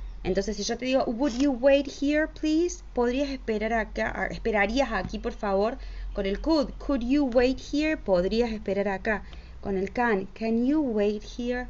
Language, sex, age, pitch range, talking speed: English, female, 20-39, 190-240 Hz, 175 wpm